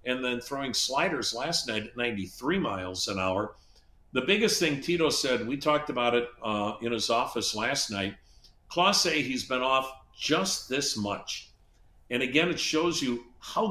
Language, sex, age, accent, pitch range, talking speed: English, male, 50-69, American, 105-130 Hz, 175 wpm